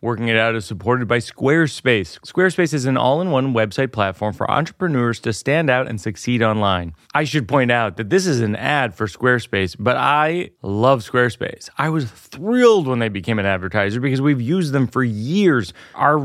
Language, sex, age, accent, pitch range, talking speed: English, male, 30-49, American, 115-175 Hz, 190 wpm